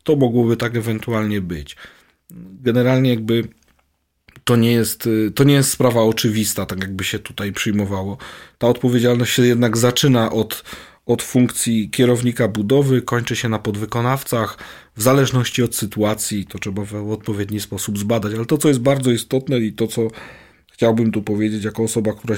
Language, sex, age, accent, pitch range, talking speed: Polish, male, 40-59, native, 105-125 Hz, 155 wpm